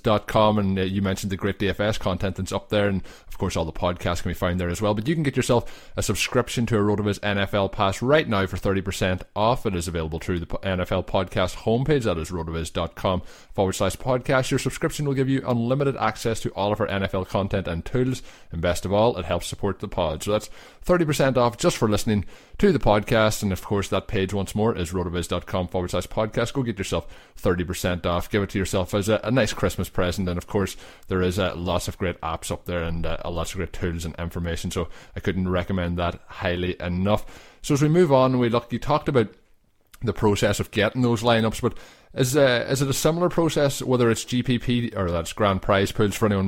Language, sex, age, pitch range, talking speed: English, male, 20-39, 95-115 Hz, 230 wpm